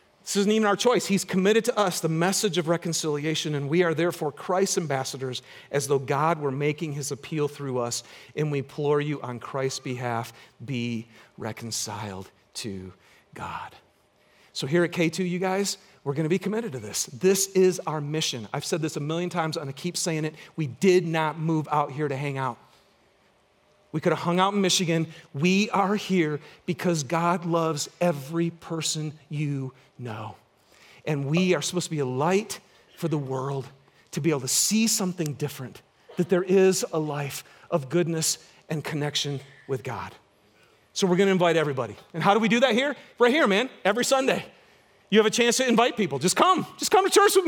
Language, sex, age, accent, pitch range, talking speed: English, male, 40-59, American, 150-205 Hz, 195 wpm